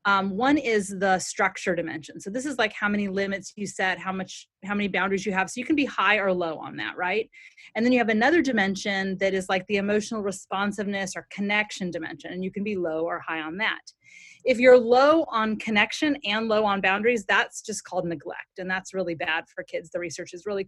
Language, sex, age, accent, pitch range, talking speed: English, female, 30-49, American, 190-235 Hz, 225 wpm